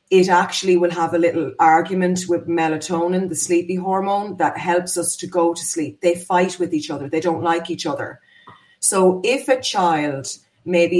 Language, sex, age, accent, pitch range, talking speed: English, female, 30-49, Irish, 160-180 Hz, 185 wpm